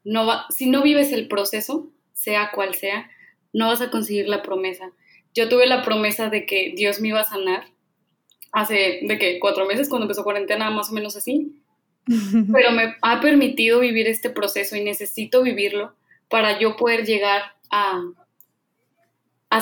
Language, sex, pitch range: Spanish, female, 205-235 Hz